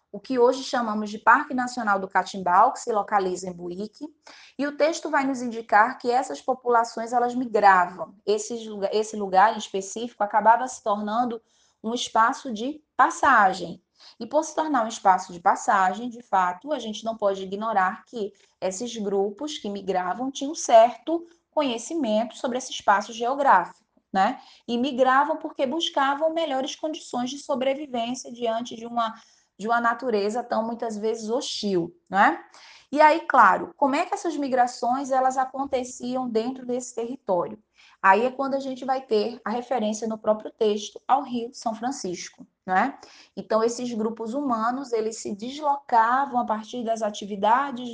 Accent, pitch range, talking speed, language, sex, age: Brazilian, 215-265 Hz, 160 wpm, Portuguese, female, 20-39